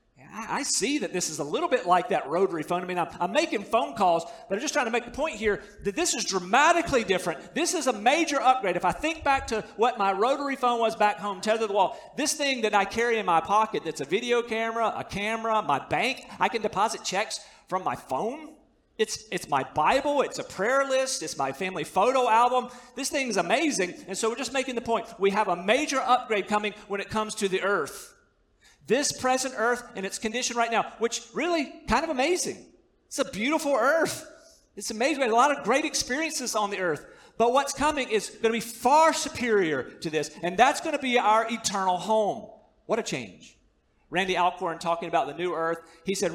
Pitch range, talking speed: 195-260 Hz, 220 wpm